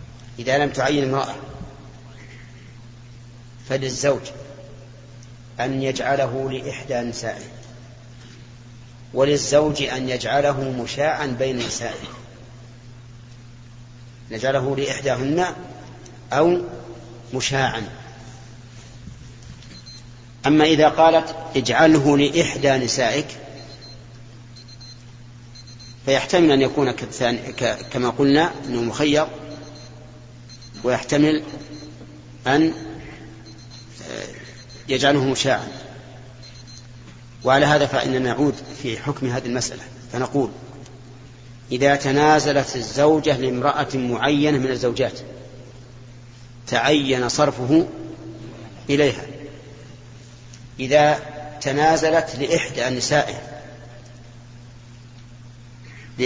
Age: 40-59